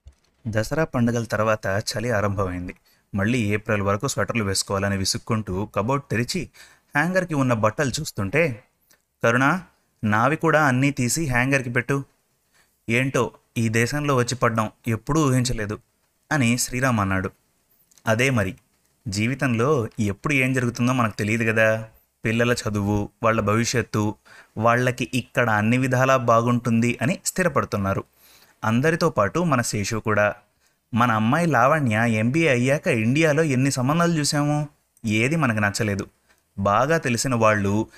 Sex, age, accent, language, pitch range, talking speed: male, 30-49, native, Telugu, 105-130 Hz, 115 wpm